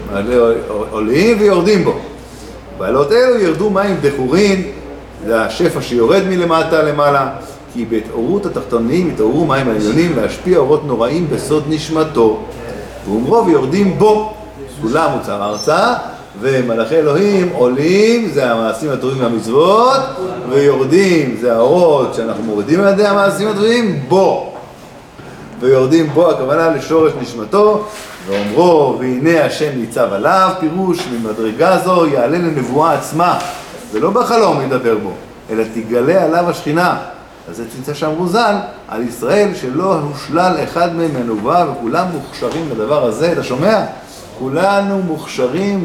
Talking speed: 115 wpm